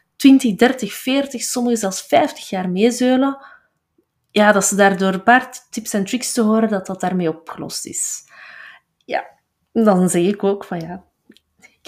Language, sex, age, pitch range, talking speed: Dutch, female, 20-39, 175-220 Hz, 165 wpm